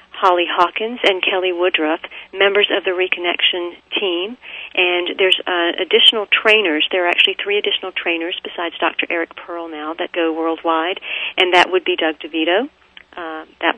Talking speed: 160 wpm